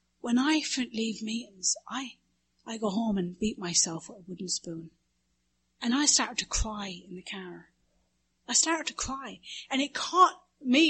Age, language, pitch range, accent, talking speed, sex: 40-59, English, 190-280 Hz, British, 170 wpm, female